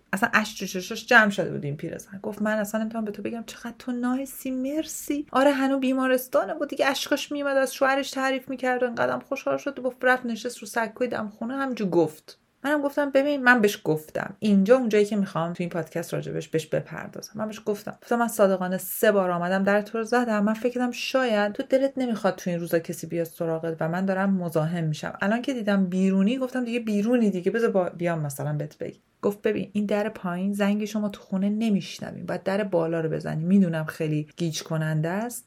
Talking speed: 200 wpm